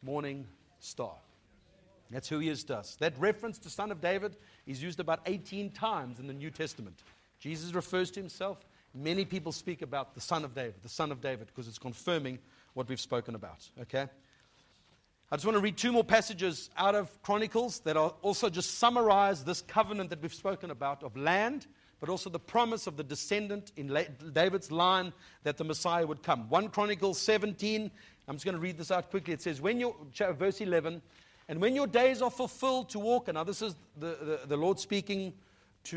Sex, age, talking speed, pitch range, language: male, 50-69, 195 wpm, 145-200 Hz, English